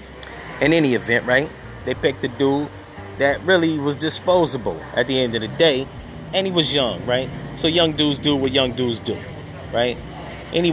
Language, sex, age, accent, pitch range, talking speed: English, male, 30-49, American, 110-145 Hz, 185 wpm